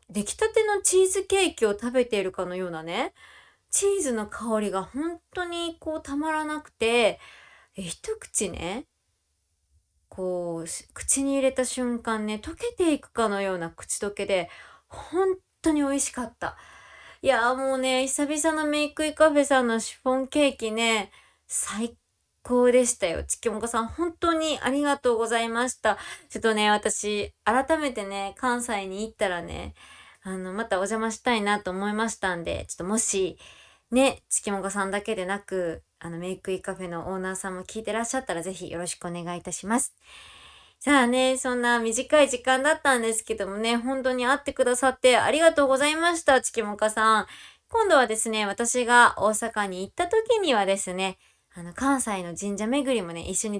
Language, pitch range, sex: Japanese, 195-270 Hz, female